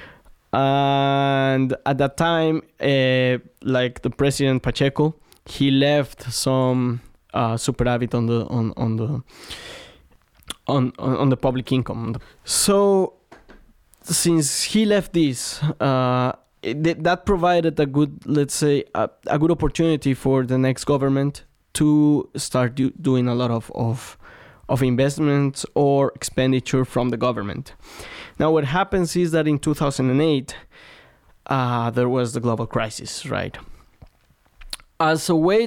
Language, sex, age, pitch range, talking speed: English, male, 20-39, 125-150 Hz, 130 wpm